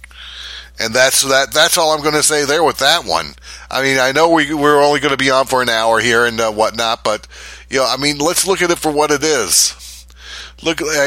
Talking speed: 250 wpm